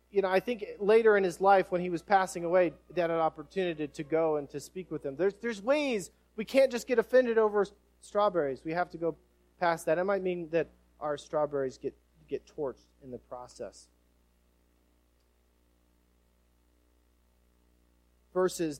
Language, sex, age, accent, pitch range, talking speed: English, male, 40-59, American, 125-185 Hz, 170 wpm